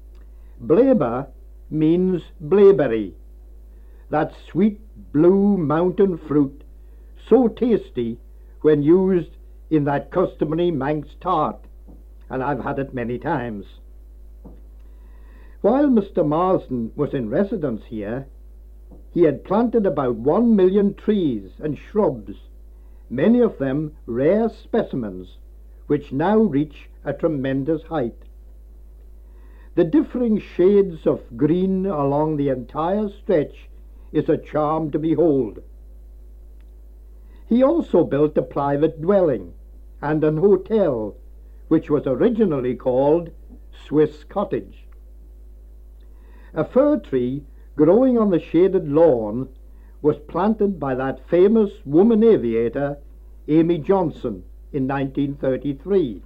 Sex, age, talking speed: male, 60-79, 105 wpm